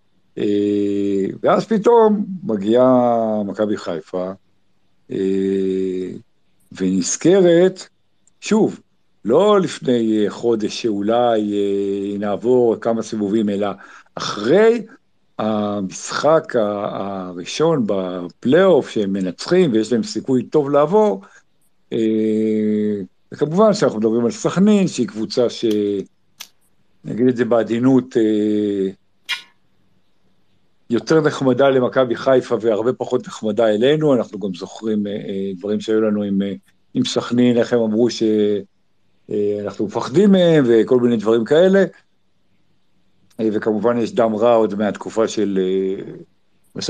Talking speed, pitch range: 95 wpm, 100-130 Hz